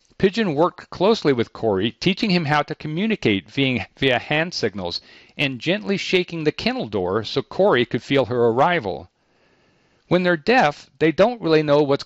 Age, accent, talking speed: 50-69, American, 165 wpm